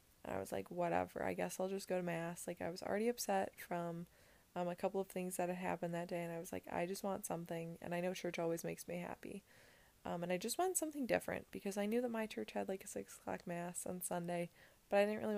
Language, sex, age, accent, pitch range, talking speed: English, female, 20-39, American, 170-205 Hz, 265 wpm